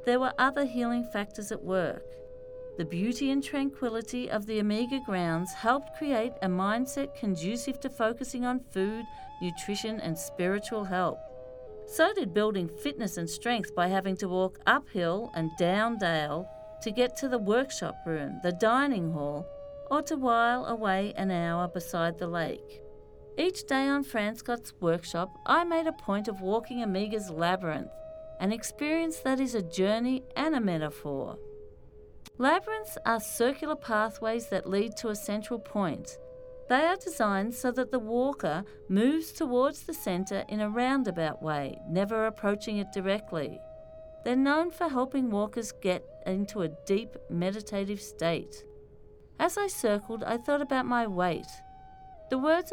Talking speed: 150 wpm